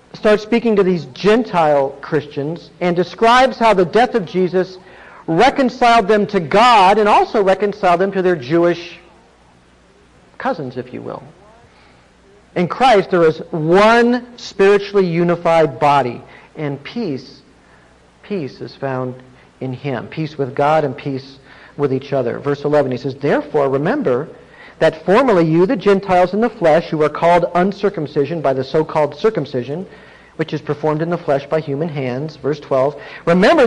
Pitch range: 155-235 Hz